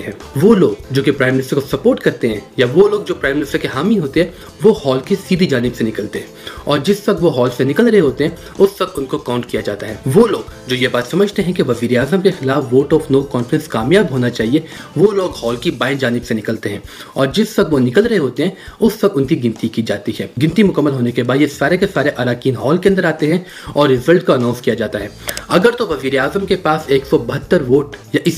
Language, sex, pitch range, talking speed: Urdu, male, 130-175 Hz, 95 wpm